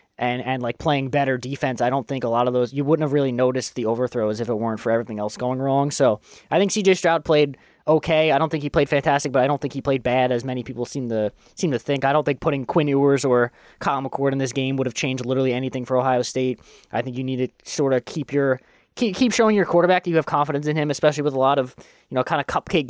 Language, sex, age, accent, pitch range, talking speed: English, male, 20-39, American, 125-145 Hz, 280 wpm